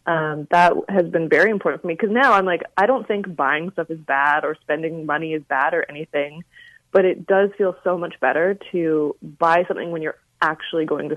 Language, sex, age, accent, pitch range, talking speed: English, female, 20-39, American, 155-195 Hz, 220 wpm